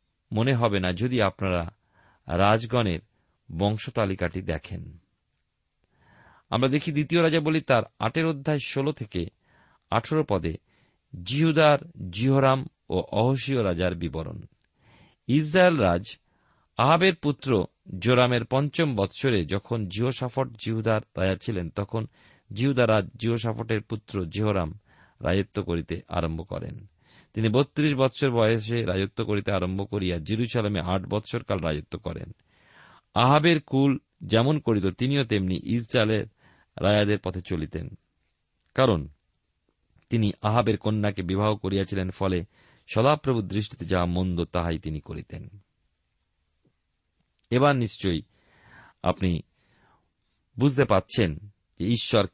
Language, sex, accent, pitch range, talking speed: Bengali, male, native, 90-125 Hz, 105 wpm